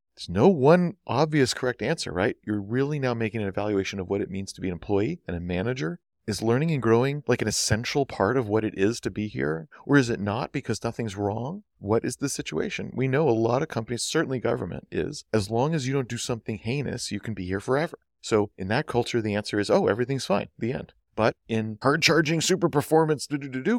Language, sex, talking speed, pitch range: English, male, 230 wpm, 105-140 Hz